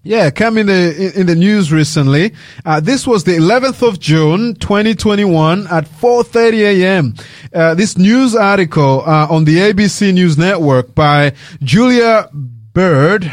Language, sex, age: English, male, 30-49